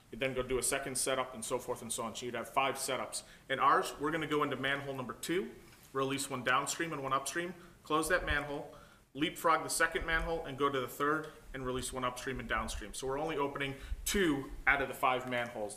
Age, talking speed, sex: 30-49, 230 wpm, male